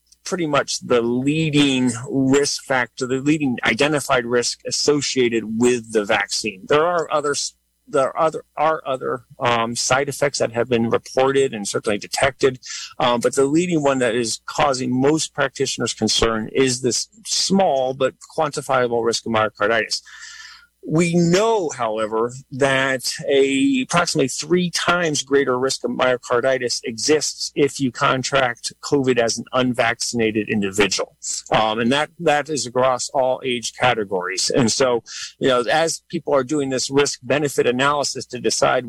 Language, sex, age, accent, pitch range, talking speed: English, male, 40-59, American, 115-145 Hz, 145 wpm